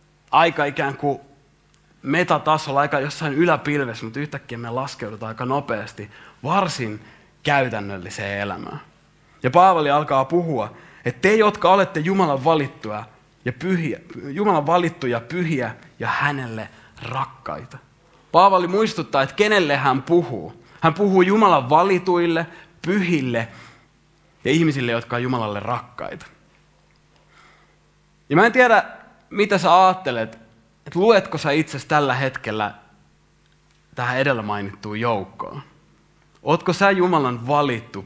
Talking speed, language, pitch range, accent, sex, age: 115 wpm, Finnish, 115-175 Hz, native, male, 30-49